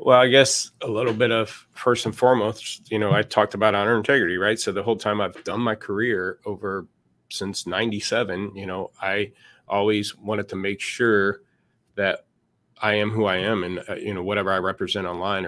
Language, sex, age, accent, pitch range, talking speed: English, male, 30-49, American, 95-115 Hz, 200 wpm